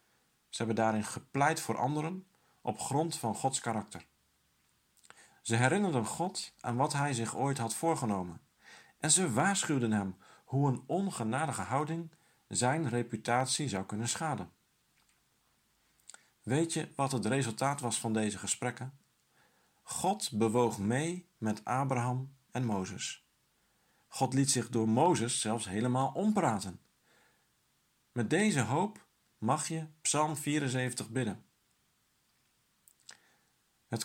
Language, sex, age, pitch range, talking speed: Dutch, male, 50-69, 110-150 Hz, 120 wpm